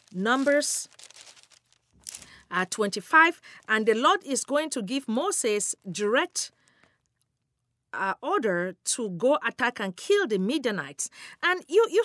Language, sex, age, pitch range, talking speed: English, female, 40-59, 210-300 Hz, 120 wpm